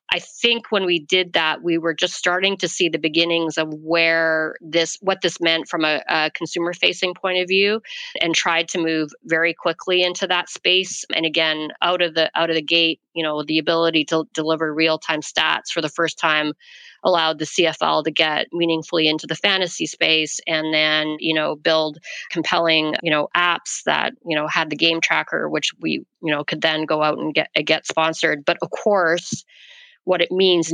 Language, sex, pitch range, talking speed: English, female, 160-185 Hz, 200 wpm